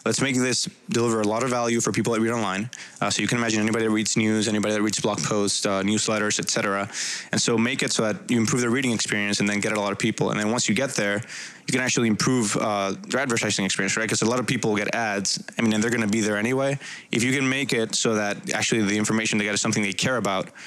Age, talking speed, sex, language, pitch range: 20-39, 285 wpm, male, English, 105-120 Hz